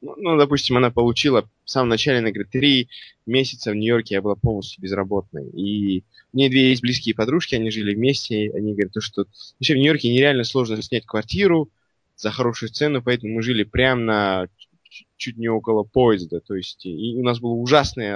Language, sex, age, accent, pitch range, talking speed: Russian, male, 20-39, native, 110-130 Hz, 190 wpm